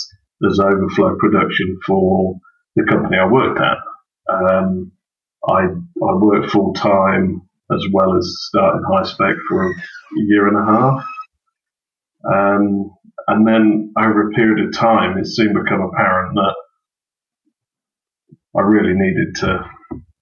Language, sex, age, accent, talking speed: English, male, 30-49, British, 130 wpm